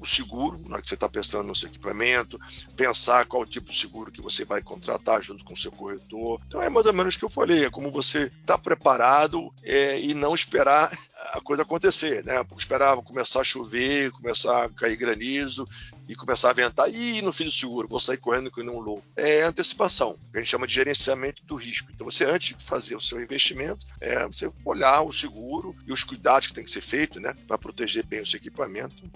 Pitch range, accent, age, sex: 120-155 Hz, Brazilian, 50-69, male